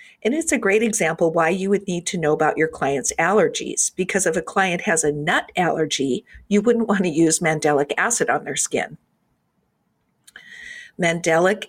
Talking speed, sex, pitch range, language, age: 175 wpm, female, 160-215 Hz, English, 50-69